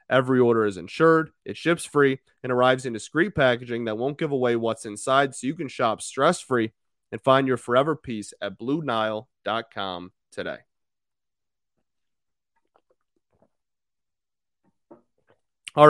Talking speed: 120 wpm